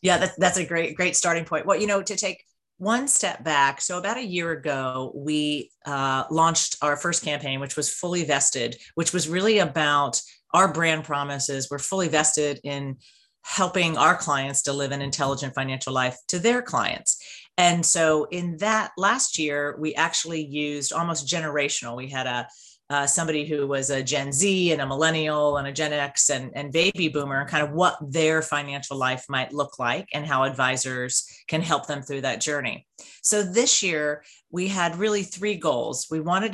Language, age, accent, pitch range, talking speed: English, 40-59, American, 140-175 Hz, 185 wpm